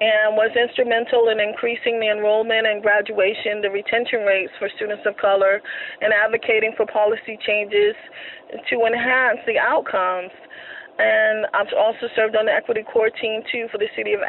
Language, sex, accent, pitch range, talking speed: English, female, American, 215-280 Hz, 170 wpm